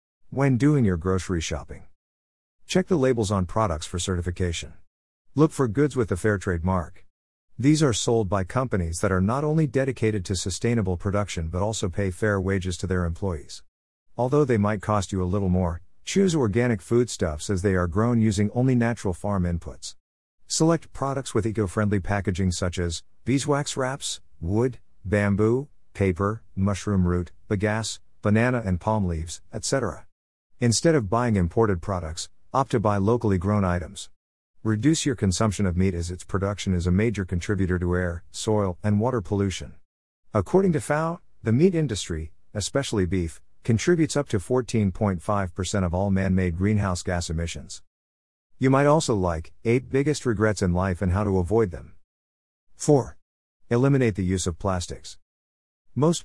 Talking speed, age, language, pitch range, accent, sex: 160 wpm, 50-69, English, 90-115 Hz, American, male